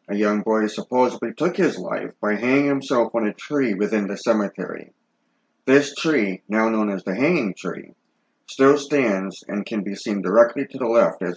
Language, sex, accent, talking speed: English, male, American, 185 wpm